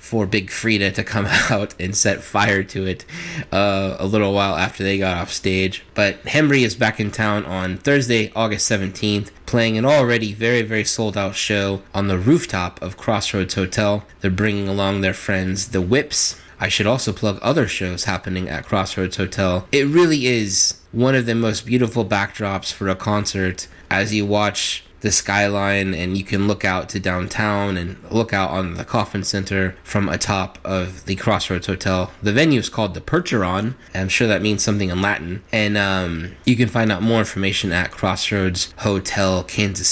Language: English